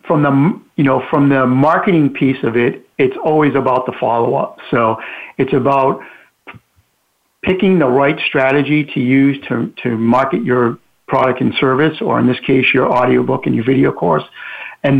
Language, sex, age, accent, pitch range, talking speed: English, male, 50-69, American, 130-155 Hz, 170 wpm